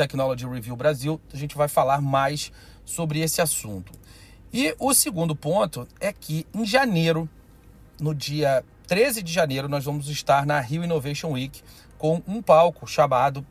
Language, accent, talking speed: Portuguese, Brazilian, 155 wpm